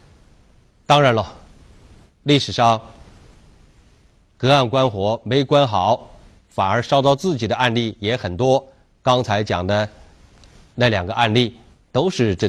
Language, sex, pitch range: Chinese, male, 100-145 Hz